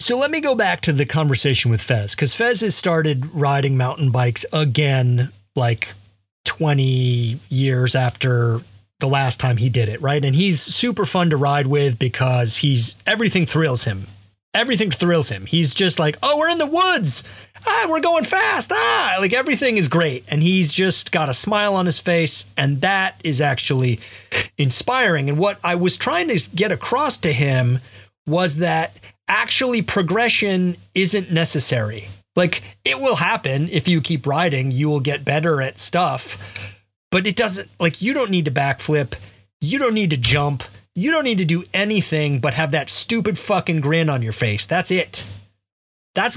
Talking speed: 175 wpm